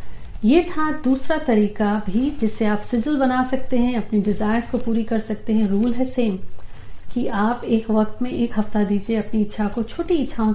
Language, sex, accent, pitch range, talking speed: Hindi, female, native, 205-235 Hz, 195 wpm